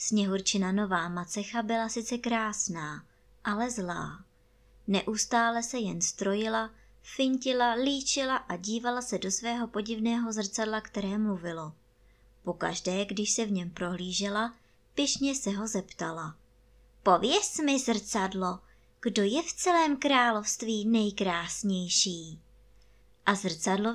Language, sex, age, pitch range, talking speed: Czech, male, 20-39, 175-235 Hz, 110 wpm